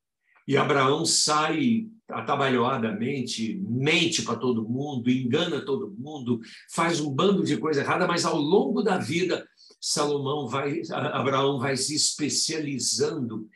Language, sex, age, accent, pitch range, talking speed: Portuguese, male, 60-79, Brazilian, 130-195 Hz, 115 wpm